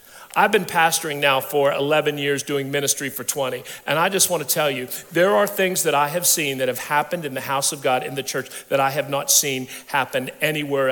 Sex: male